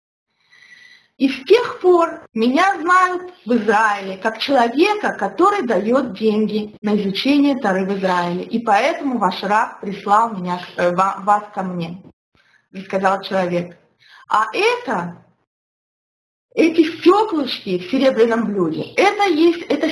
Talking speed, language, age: 120 wpm, Russian, 20-39